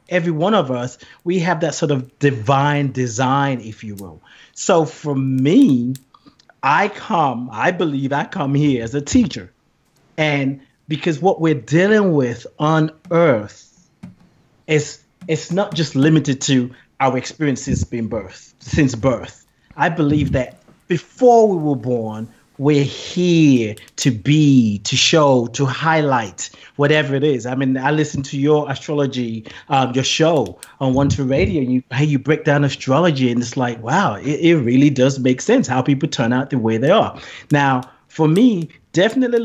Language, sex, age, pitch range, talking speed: English, male, 30-49, 130-160 Hz, 165 wpm